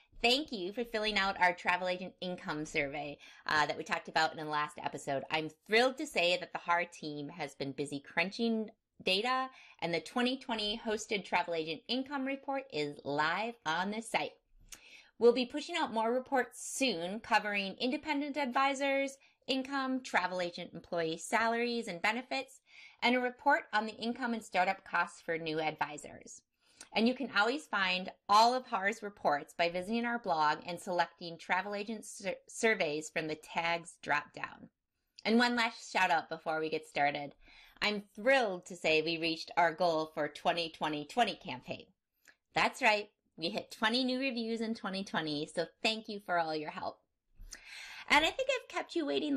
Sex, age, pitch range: female, 30-49, 165-240 Hz